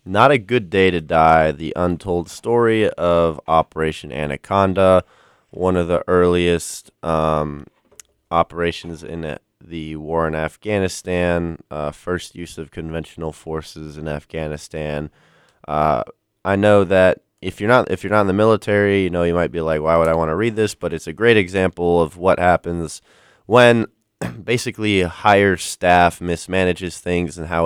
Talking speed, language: 160 wpm, English